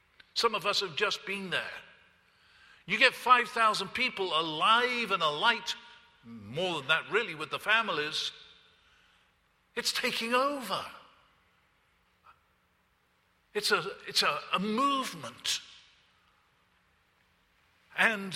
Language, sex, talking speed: English, male, 95 wpm